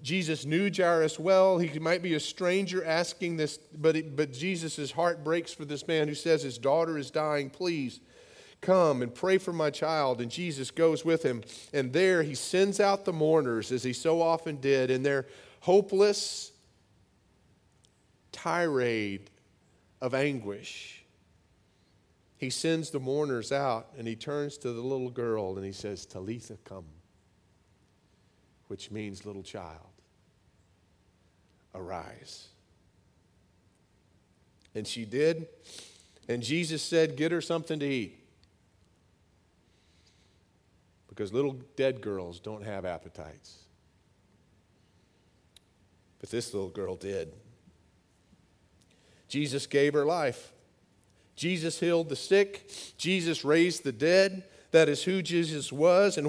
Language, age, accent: English, 40-59, American